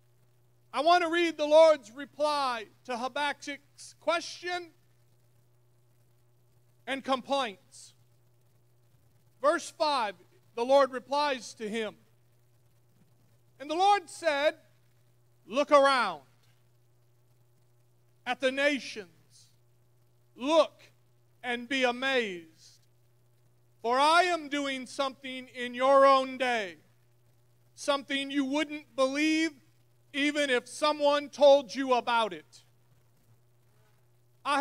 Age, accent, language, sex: 40-59, American, English, male